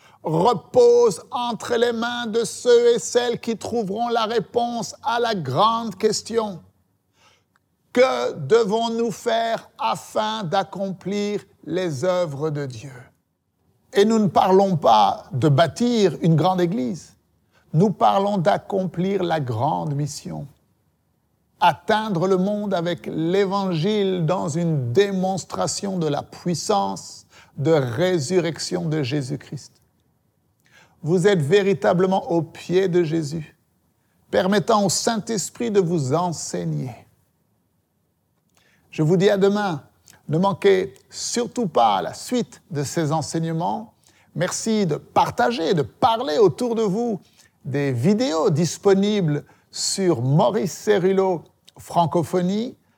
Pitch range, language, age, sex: 150-210 Hz, French, 60-79, male